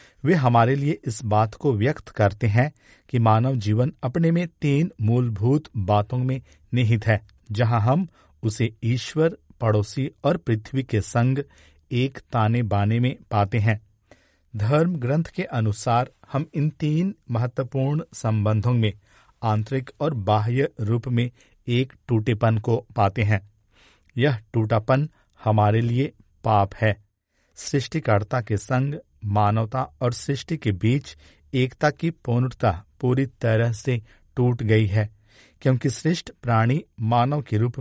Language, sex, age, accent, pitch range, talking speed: Hindi, male, 50-69, native, 105-135 Hz, 135 wpm